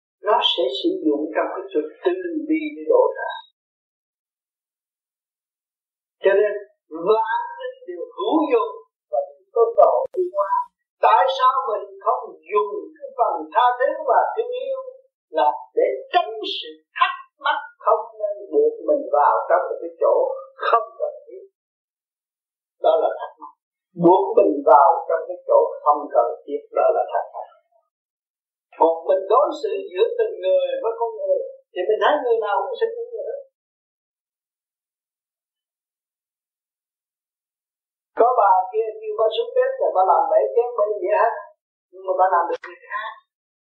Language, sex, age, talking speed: Vietnamese, male, 50-69, 145 wpm